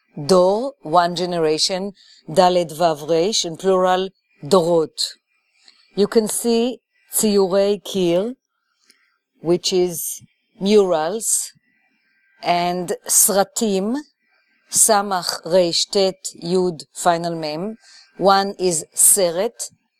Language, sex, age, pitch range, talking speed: English, female, 50-69, 170-205 Hz, 80 wpm